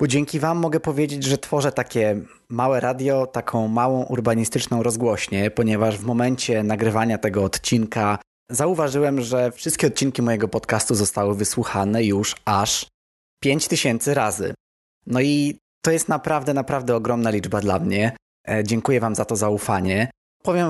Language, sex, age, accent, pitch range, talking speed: Polish, male, 20-39, native, 110-140 Hz, 140 wpm